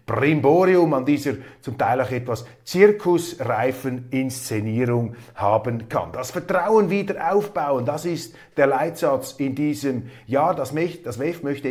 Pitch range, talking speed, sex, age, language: 130-160 Hz, 130 wpm, male, 30-49, German